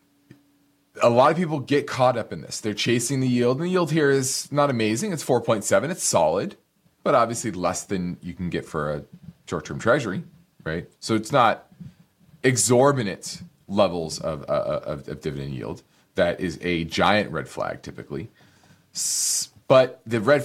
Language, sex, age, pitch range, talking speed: English, male, 30-49, 100-145 Hz, 170 wpm